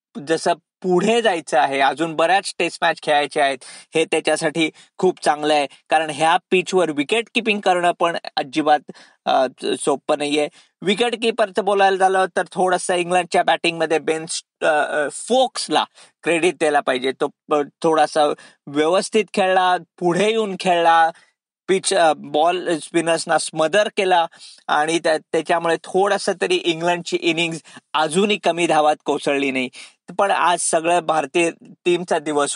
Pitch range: 150-185 Hz